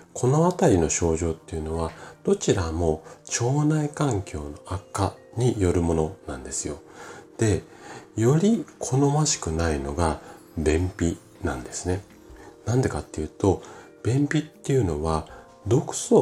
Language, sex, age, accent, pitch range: Japanese, male, 40-59, native, 80-125 Hz